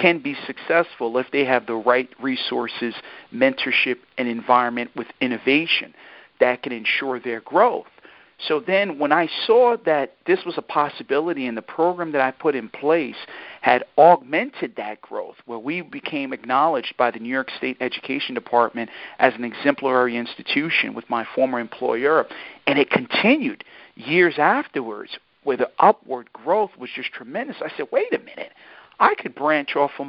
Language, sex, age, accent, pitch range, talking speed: English, male, 50-69, American, 130-205 Hz, 165 wpm